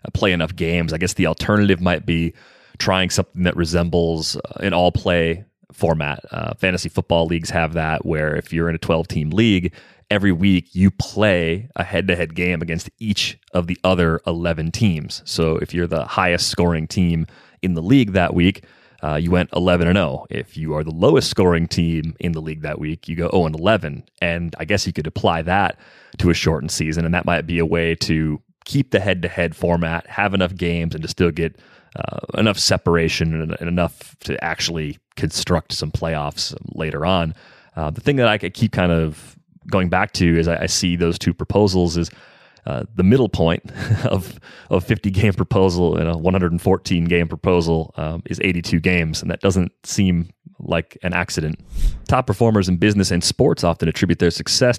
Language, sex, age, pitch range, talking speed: English, male, 30-49, 80-95 Hz, 185 wpm